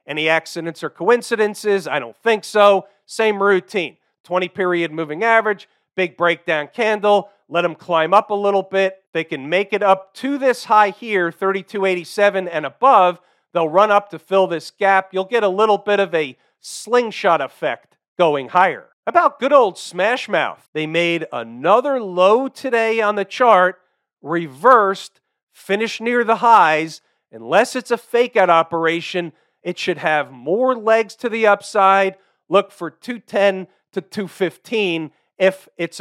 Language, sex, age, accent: English, male, 40-59, American